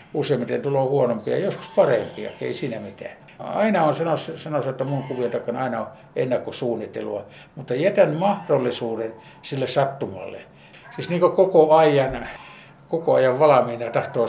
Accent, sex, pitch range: native, male, 120-150 Hz